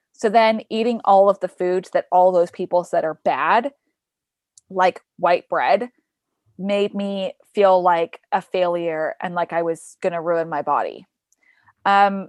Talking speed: 160 wpm